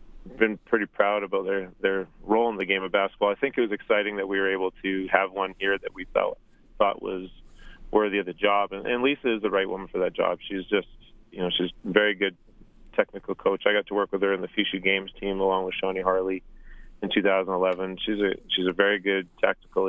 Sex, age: male, 30-49